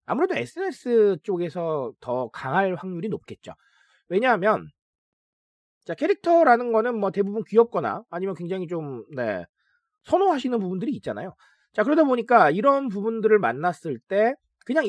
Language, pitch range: Korean, 180-280 Hz